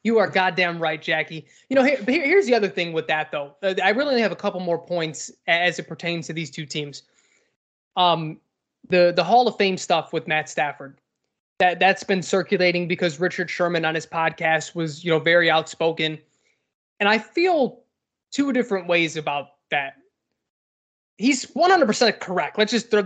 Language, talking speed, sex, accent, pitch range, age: English, 180 wpm, male, American, 165-220 Hz, 20-39